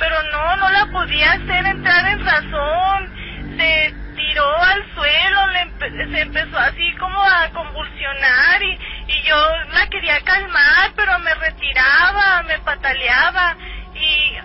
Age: 30-49